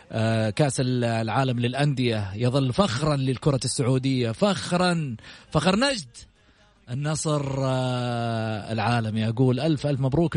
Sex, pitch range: male, 130-205 Hz